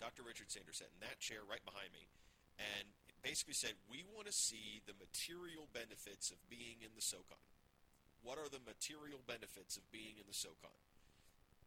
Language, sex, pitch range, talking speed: English, male, 95-120 Hz, 180 wpm